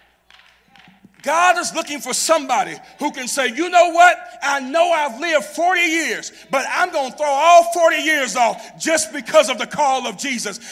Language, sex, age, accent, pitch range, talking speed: English, male, 40-59, American, 175-285 Hz, 185 wpm